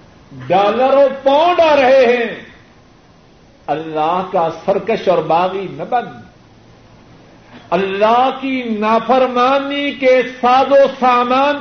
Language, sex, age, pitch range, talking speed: Urdu, male, 50-69, 195-280 Hz, 95 wpm